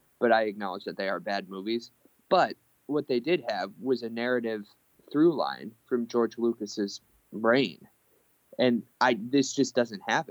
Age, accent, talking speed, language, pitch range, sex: 20-39, American, 165 wpm, English, 110-130 Hz, male